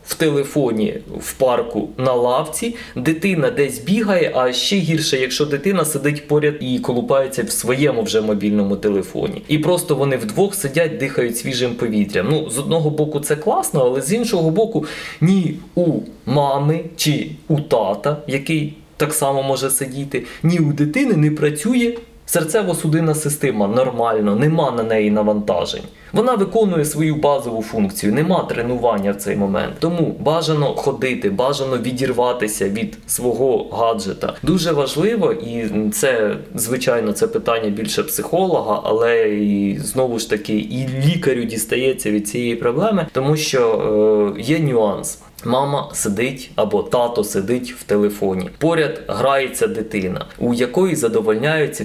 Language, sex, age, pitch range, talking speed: Ukrainian, male, 20-39, 120-165 Hz, 140 wpm